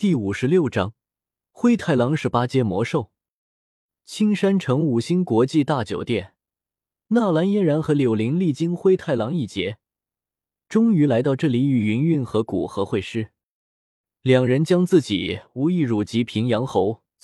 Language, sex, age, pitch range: Chinese, male, 20-39, 110-160 Hz